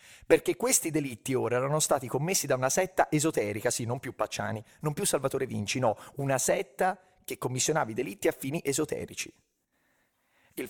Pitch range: 110-155 Hz